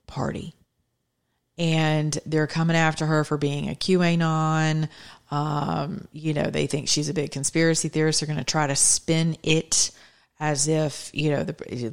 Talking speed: 160 wpm